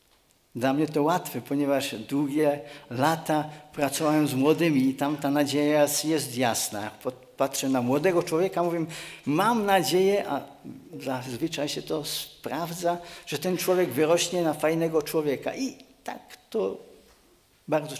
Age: 50-69